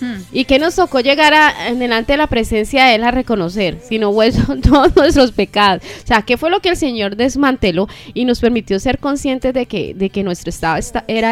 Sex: female